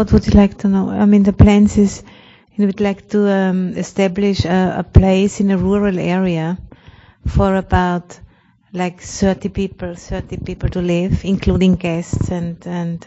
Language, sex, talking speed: English, female, 170 wpm